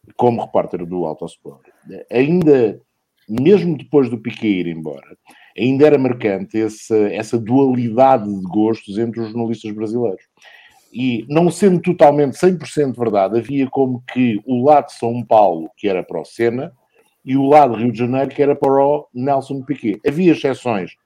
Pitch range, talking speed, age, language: 110-140 Hz, 160 wpm, 50-69, English